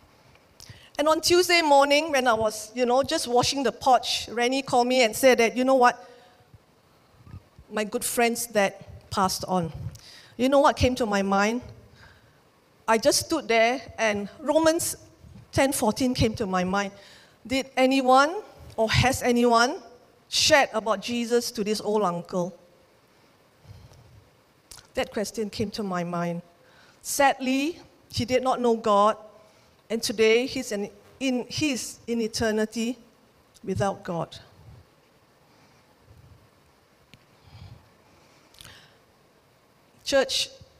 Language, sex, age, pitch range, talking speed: English, female, 50-69, 205-255 Hz, 120 wpm